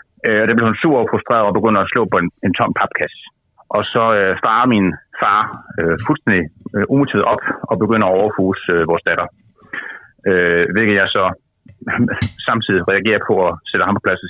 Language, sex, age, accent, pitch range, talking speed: Danish, male, 30-49, native, 100-125 Hz, 190 wpm